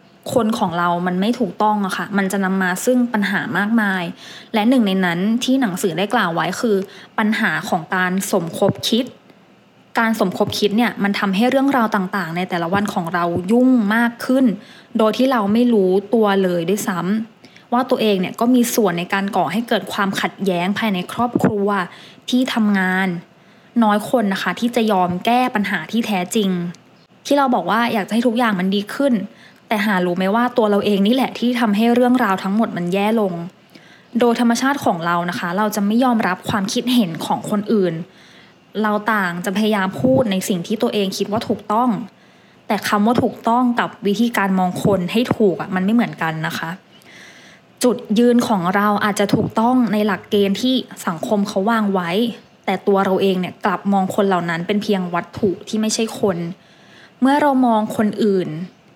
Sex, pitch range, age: female, 190-235 Hz, 20-39